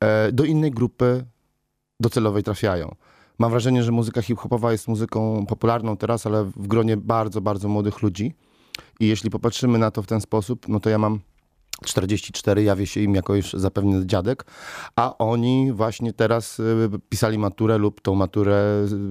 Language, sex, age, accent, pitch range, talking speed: Polish, male, 30-49, native, 105-120 Hz, 160 wpm